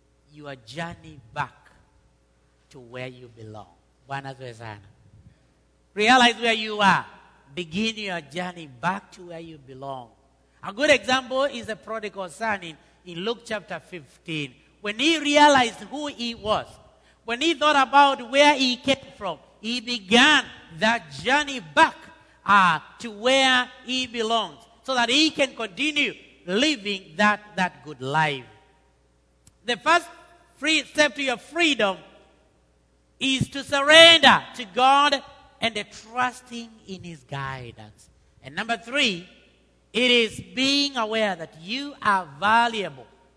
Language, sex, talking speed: English, male, 125 wpm